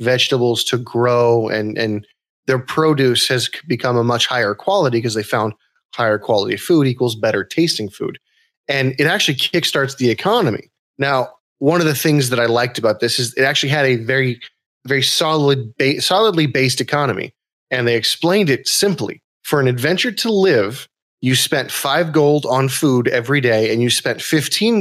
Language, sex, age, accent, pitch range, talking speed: English, male, 30-49, American, 120-145 Hz, 175 wpm